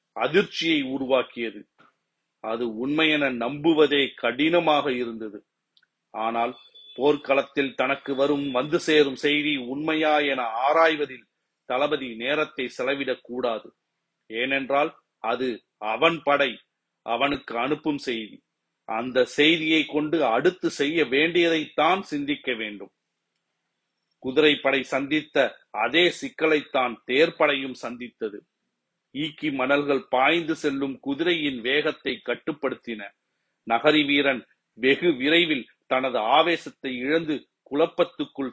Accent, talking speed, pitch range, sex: native, 85 wpm, 130-155 Hz, male